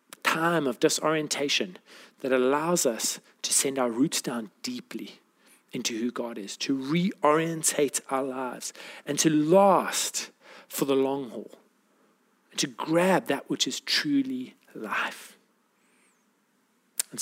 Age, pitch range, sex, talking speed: 40-59, 155-210 Hz, male, 120 wpm